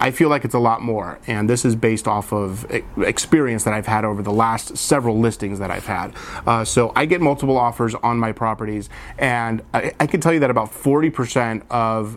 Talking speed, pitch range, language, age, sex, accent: 215 wpm, 110-145 Hz, English, 30-49, male, American